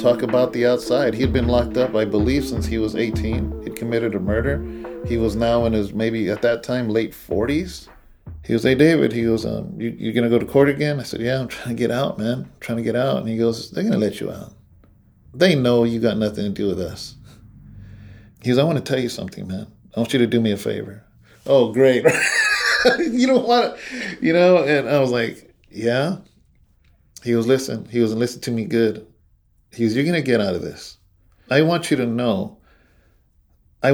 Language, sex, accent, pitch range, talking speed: English, male, American, 95-125 Hz, 230 wpm